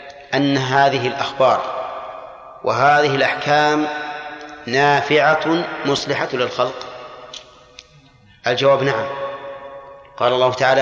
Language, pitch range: Arabic, 135-150 Hz